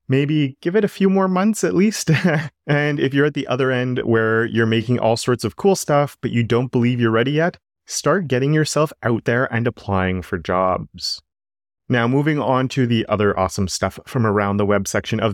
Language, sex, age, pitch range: English, male, 30-49, 105-130 Hz